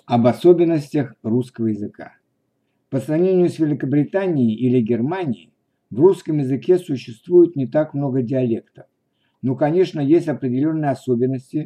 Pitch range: 125-160 Hz